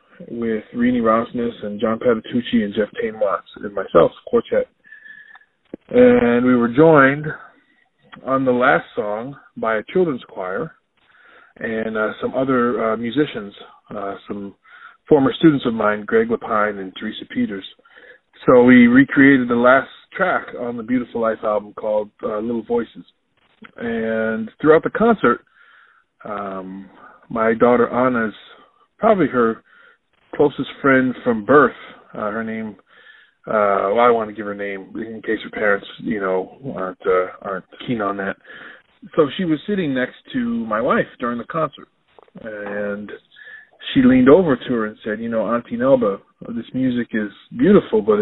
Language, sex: English, male